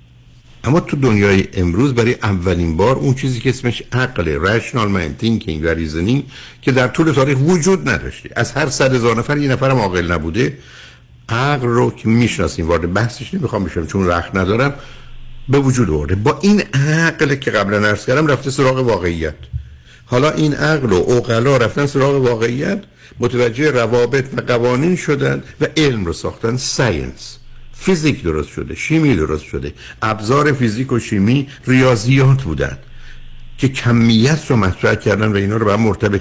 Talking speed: 160 wpm